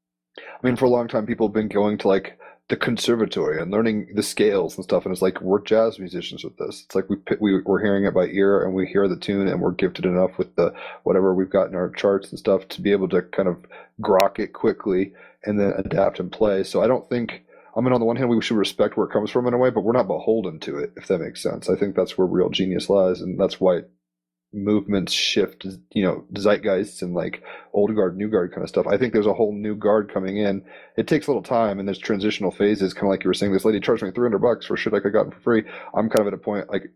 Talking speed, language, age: 275 wpm, English, 30-49